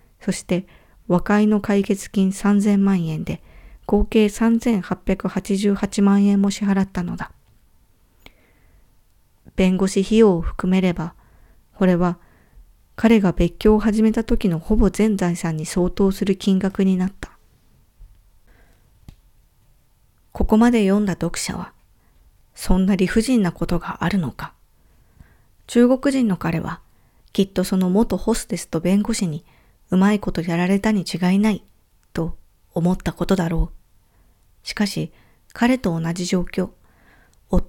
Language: Japanese